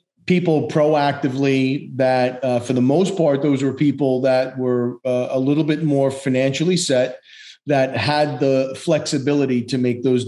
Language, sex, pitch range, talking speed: English, male, 120-140 Hz, 160 wpm